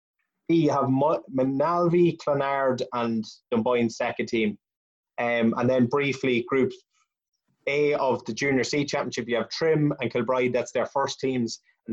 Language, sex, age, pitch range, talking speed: English, male, 20-39, 120-140 Hz, 145 wpm